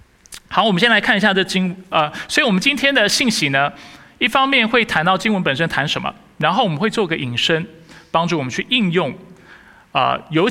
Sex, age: male, 20-39